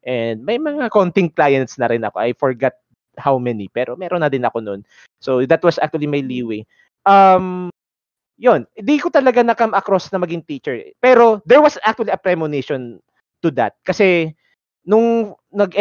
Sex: male